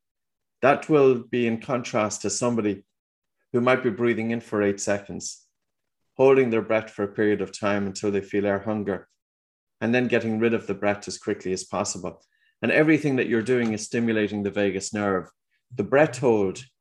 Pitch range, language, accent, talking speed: 100-125 Hz, English, Irish, 185 wpm